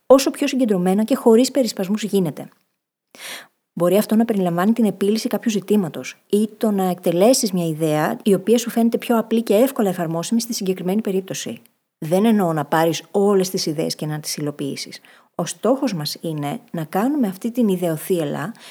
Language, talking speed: Greek, 170 wpm